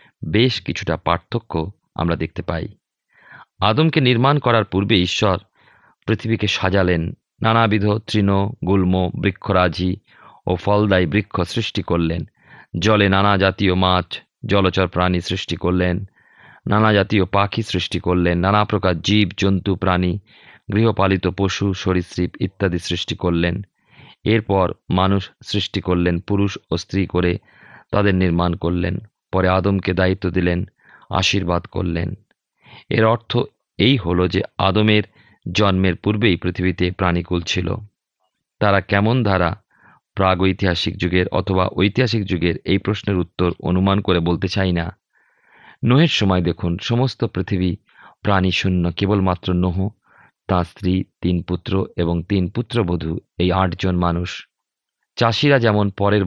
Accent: native